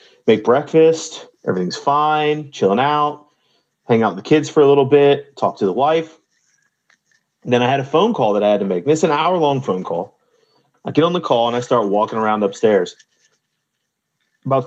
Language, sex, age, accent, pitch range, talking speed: English, male, 30-49, American, 115-160 Hz, 195 wpm